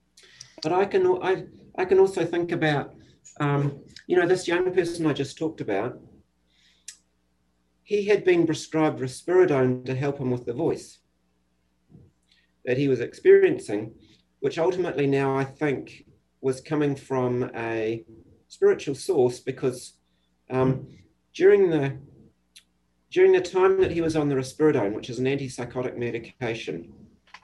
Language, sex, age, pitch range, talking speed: English, male, 50-69, 115-170 Hz, 130 wpm